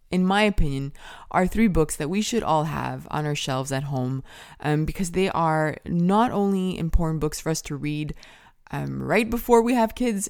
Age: 20-39